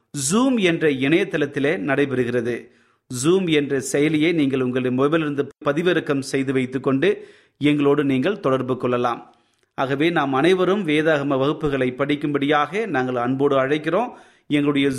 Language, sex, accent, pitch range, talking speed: Tamil, male, native, 130-165 Hz, 110 wpm